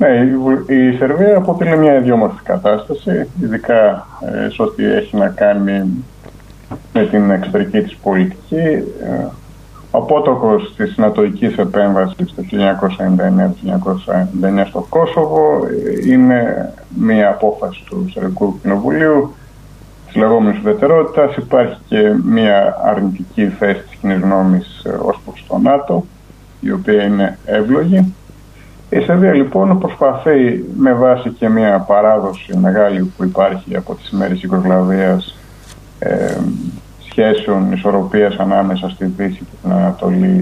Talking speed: 115 wpm